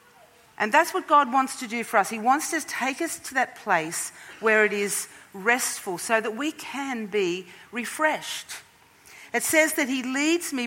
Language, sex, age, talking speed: English, female, 50-69, 185 wpm